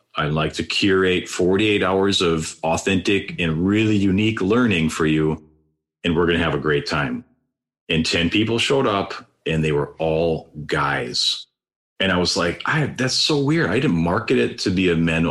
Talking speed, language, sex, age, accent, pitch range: 190 wpm, English, male, 40-59, American, 80-105 Hz